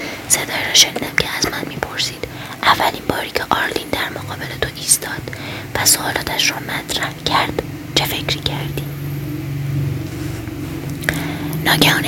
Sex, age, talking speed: female, 20-39, 120 wpm